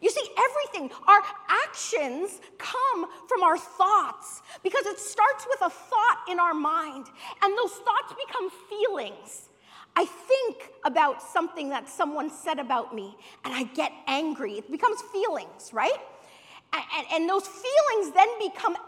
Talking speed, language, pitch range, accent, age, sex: 150 wpm, English, 290-400 Hz, American, 40-59, female